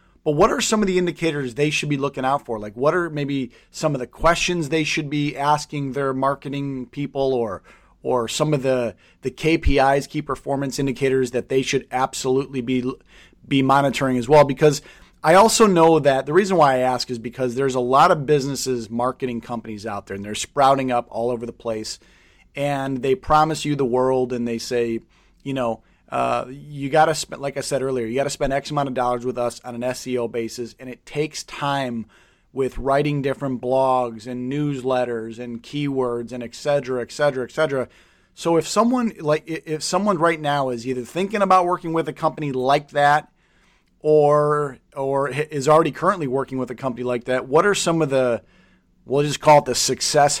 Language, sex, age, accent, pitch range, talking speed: English, male, 30-49, American, 125-150 Hz, 200 wpm